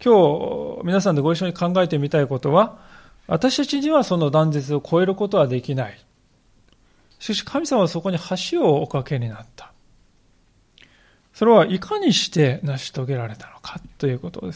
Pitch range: 135-185 Hz